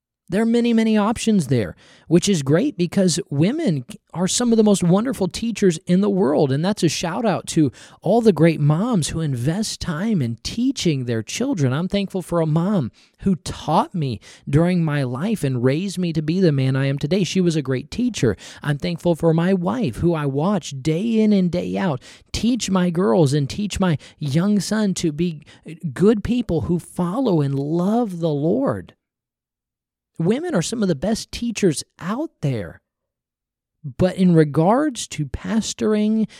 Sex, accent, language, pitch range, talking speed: male, American, English, 130-195 Hz, 180 wpm